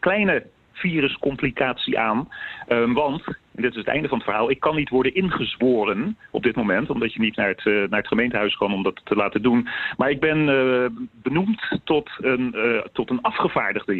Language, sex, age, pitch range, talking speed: English, male, 40-59, 115-145 Hz, 195 wpm